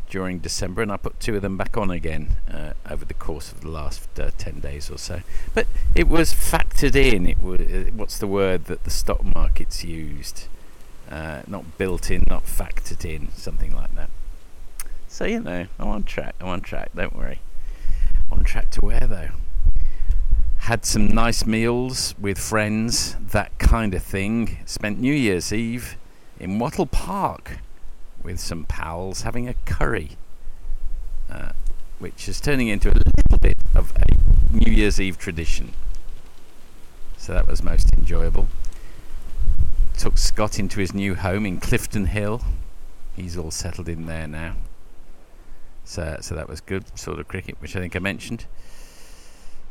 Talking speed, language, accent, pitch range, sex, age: 165 wpm, English, British, 75-100 Hz, male, 50-69